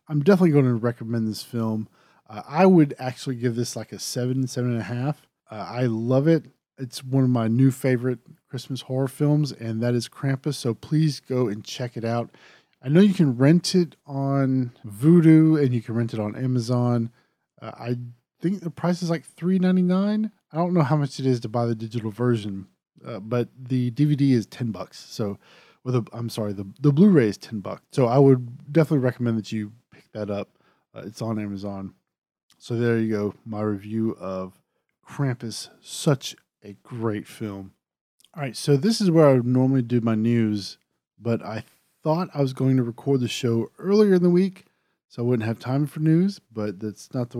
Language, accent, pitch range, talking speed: English, American, 115-145 Hz, 200 wpm